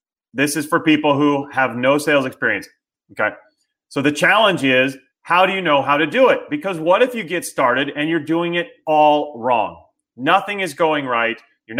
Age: 30-49